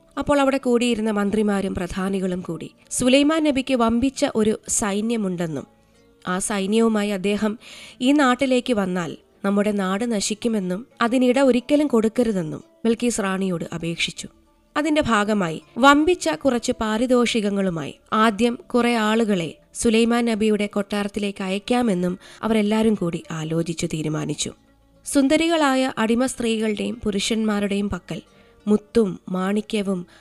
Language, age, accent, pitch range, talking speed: Malayalam, 20-39, native, 195-245 Hz, 95 wpm